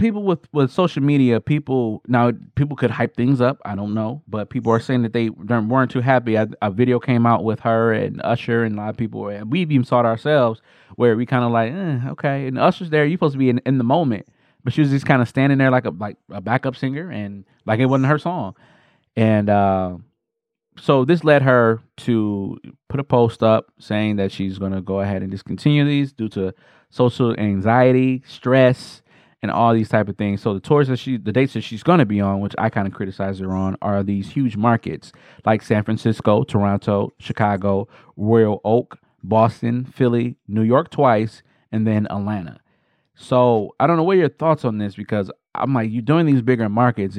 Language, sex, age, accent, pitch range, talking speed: English, male, 20-39, American, 105-135 Hz, 215 wpm